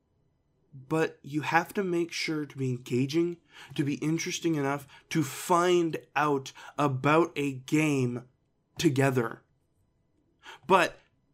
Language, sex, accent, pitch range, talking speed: English, male, American, 135-185 Hz, 110 wpm